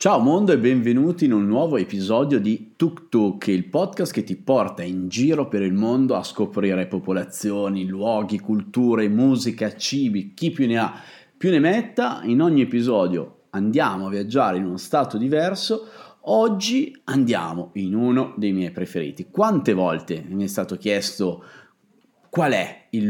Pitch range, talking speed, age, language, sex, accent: 95-135 Hz, 160 wpm, 30-49, Italian, male, native